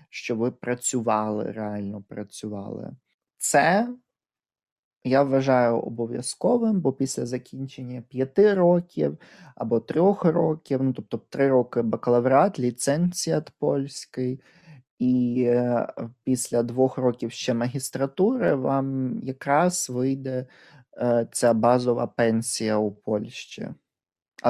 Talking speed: 95 wpm